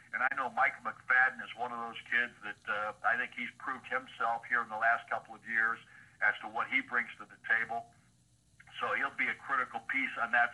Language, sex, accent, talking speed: English, male, American, 230 wpm